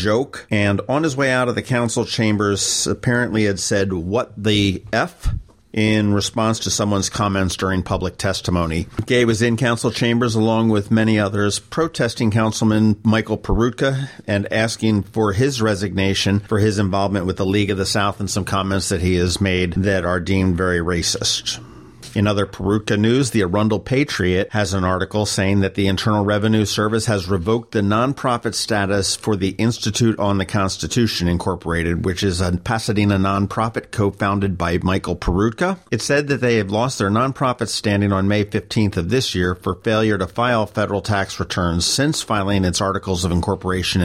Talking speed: 175 wpm